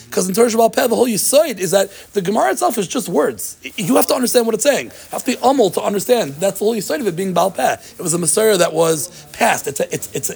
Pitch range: 150-215 Hz